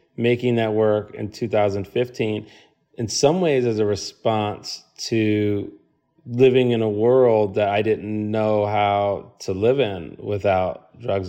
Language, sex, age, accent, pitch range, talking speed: English, male, 30-49, American, 95-120 Hz, 140 wpm